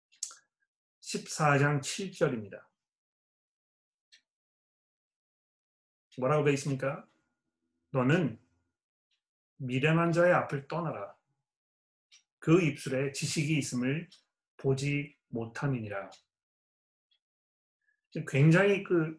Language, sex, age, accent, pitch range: Korean, male, 30-49, native, 125-160 Hz